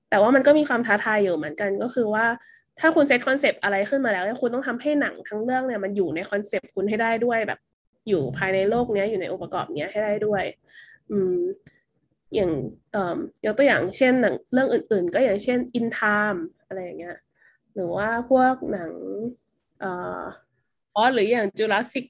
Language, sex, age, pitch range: Thai, female, 20-39, 195-255 Hz